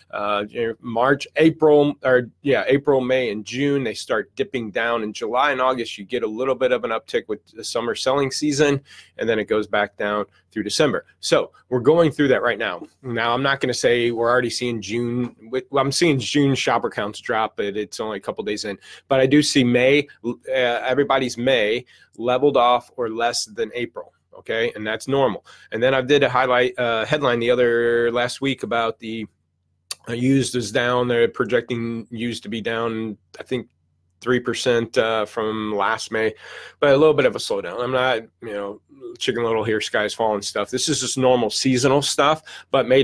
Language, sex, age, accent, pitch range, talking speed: English, male, 30-49, American, 115-140 Hz, 200 wpm